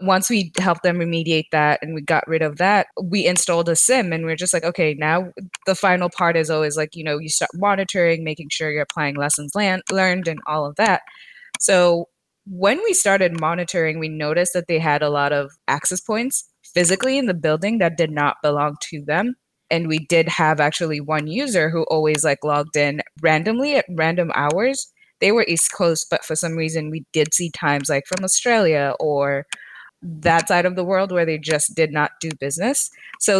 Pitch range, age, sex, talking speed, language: 155-185 Hz, 20-39, female, 205 wpm, English